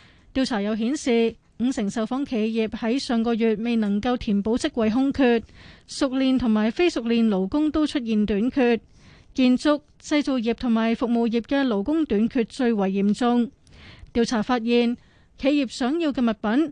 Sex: female